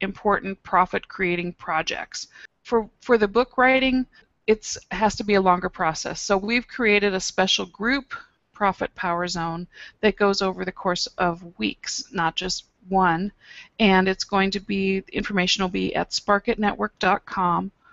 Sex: female